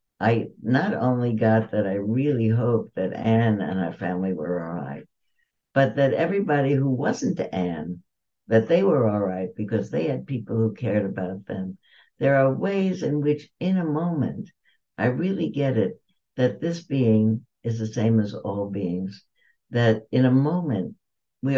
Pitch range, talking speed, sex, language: 105-130 Hz, 165 wpm, female, English